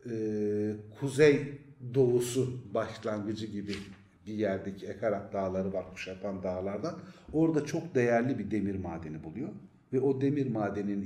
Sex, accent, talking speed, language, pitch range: male, native, 120 wpm, Turkish, 105-145 Hz